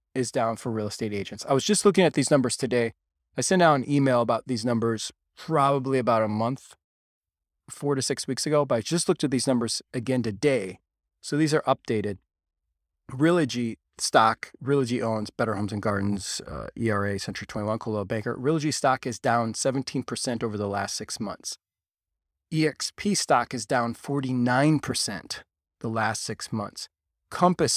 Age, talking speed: 20-39, 170 wpm